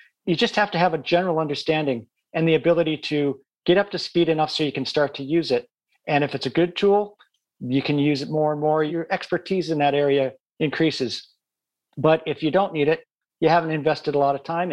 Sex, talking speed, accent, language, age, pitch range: male, 230 wpm, American, English, 50-69, 140-180 Hz